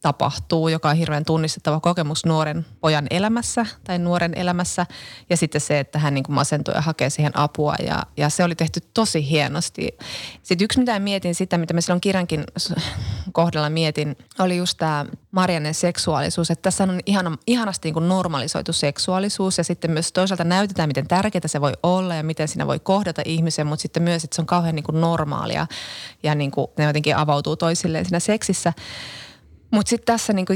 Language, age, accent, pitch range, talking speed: Finnish, 20-39, native, 150-185 Hz, 185 wpm